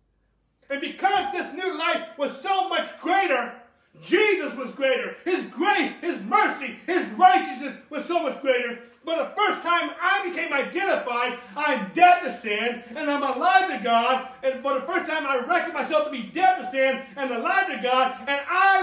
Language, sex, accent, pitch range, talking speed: English, male, American, 245-335 Hz, 180 wpm